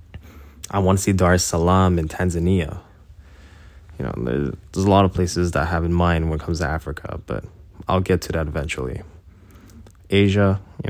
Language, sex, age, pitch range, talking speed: English, male, 20-39, 80-95 Hz, 195 wpm